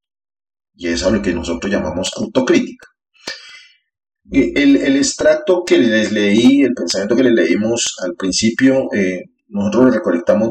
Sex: male